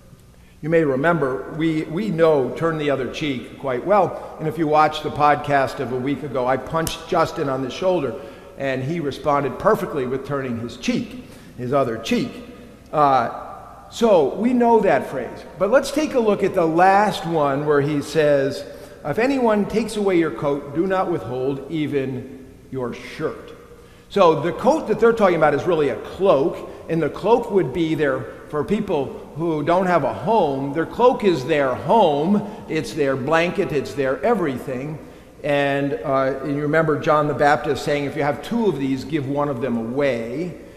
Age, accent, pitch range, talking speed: 50-69, American, 135-180 Hz, 185 wpm